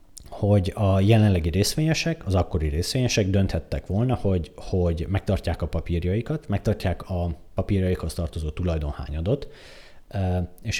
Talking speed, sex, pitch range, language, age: 110 wpm, male, 85-105 Hz, Hungarian, 30-49